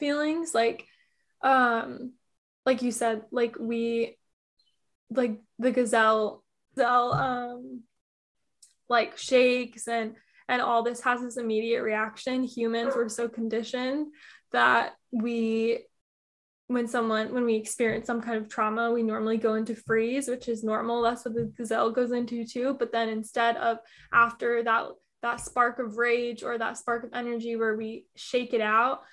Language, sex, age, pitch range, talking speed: English, female, 10-29, 230-250 Hz, 150 wpm